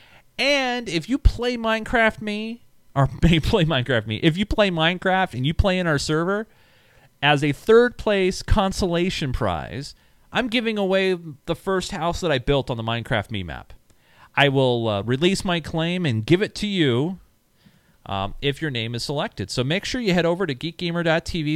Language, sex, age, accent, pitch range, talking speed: English, male, 40-59, American, 120-180 Hz, 180 wpm